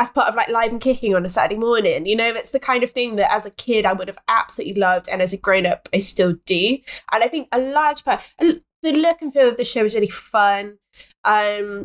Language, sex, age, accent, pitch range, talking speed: English, female, 20-39, British, 180-225 Hz, 260 wpm